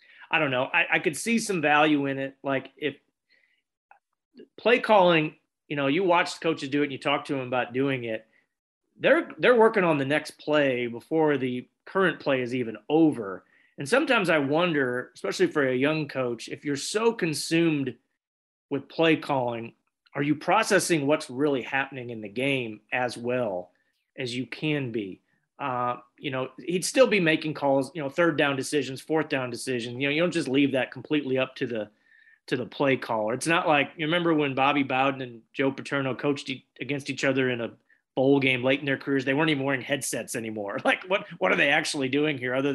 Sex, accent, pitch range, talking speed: male, American, 130-155 Hz, 205 wpm